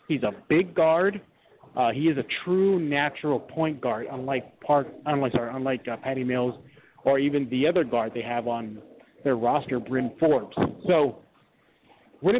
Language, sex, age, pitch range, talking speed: English, male, 40-59, 125-165 Hz, 165 wpm